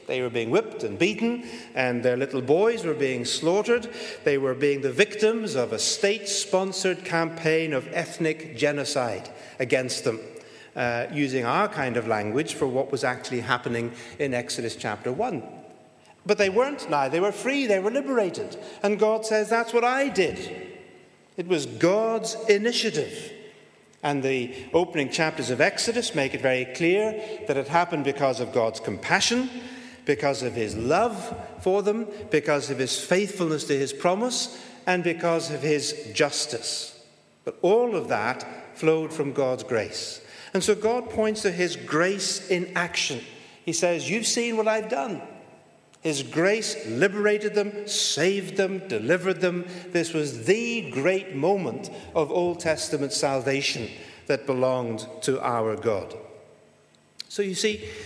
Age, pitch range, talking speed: 50-69, 140-215 Hz, 150 wpm